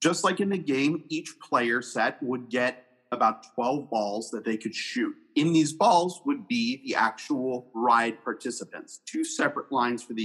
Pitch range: 120-200 Hz